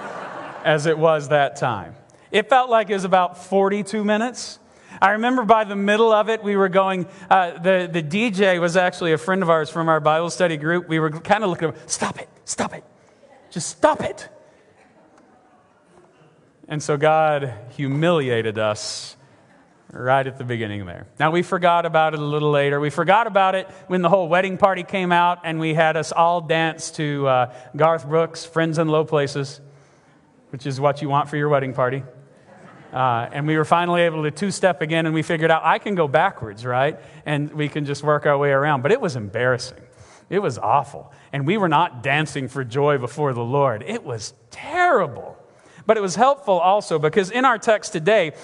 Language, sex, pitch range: English, male, 150-215 Hz